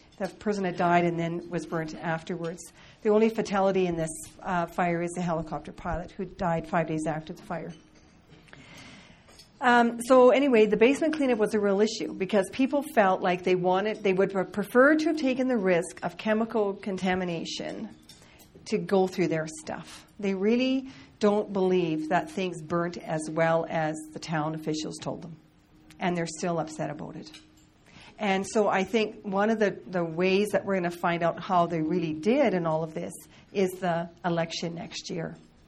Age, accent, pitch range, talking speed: 40-59, American, 165-200 Hz, 180 wpm